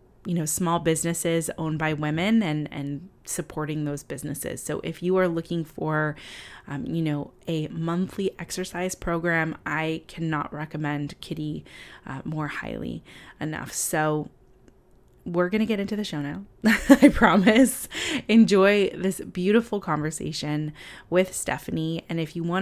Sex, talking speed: female, 145 wpm